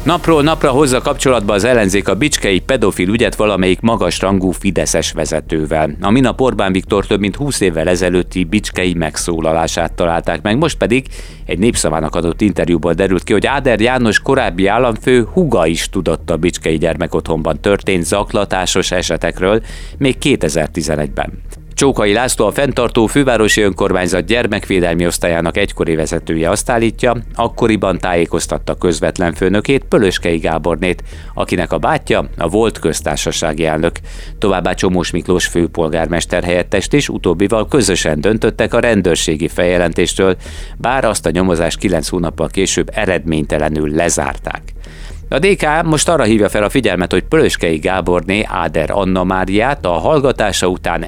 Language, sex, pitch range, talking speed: Hungarian, male, 80-100 Hz, 135 wpm